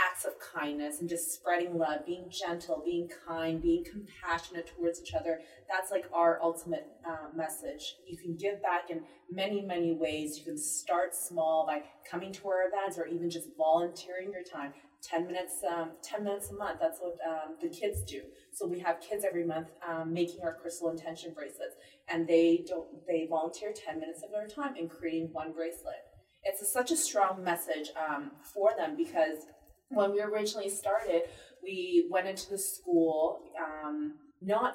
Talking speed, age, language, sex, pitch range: 180 wpm, 30-49, English, female, 165-205 Hz